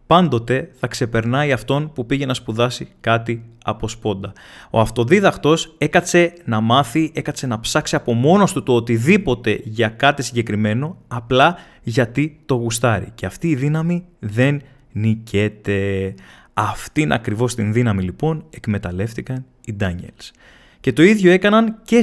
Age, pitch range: 20-39, 115-170 Hz